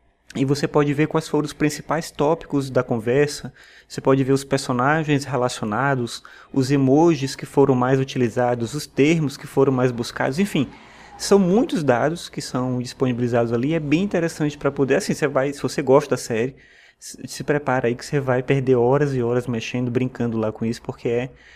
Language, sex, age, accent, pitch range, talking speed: Portuguese, male, 20-39, Brazilian, 125-150 Hz, 185 wpm